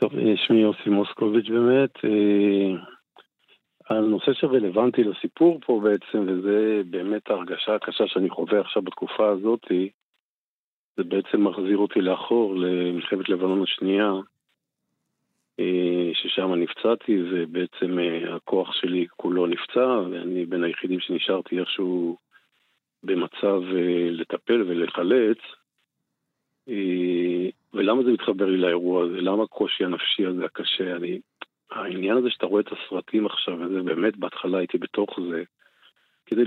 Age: 50-69